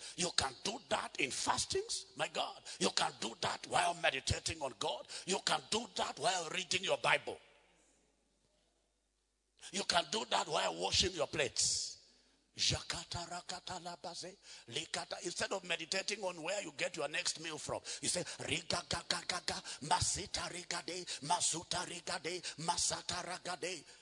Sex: male